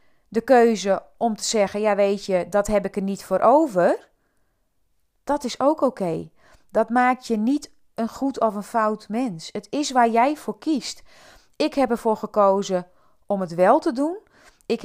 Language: Dutch